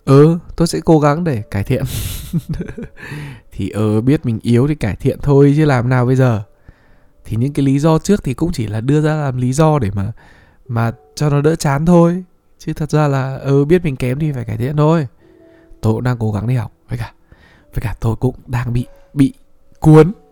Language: Vietnamese